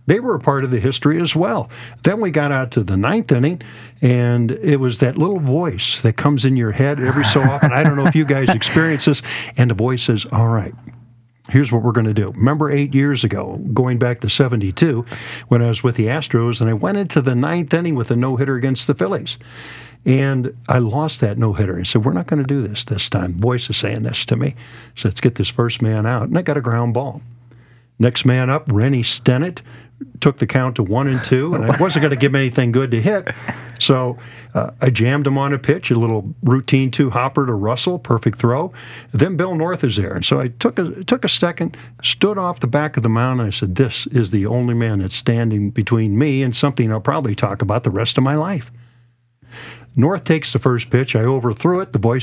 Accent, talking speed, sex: American, 235 wpm, male